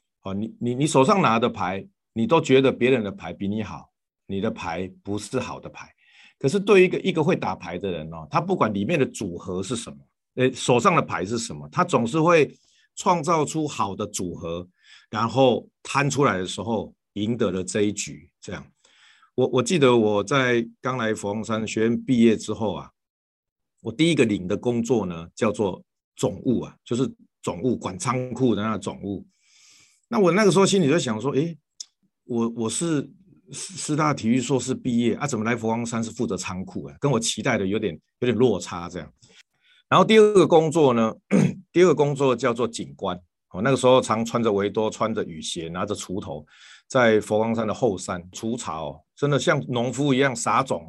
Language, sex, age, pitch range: Chinese, male, 50-69, 105-135 Hz